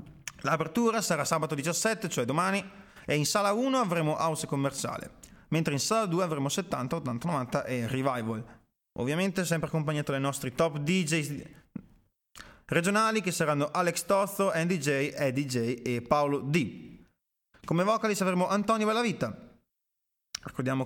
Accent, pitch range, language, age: native, 140-195 Hz, Italian, 30-49